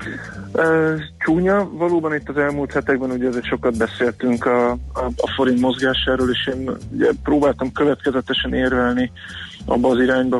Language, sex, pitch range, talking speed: Hungarian, male, 120-130 Hz, 140 wpm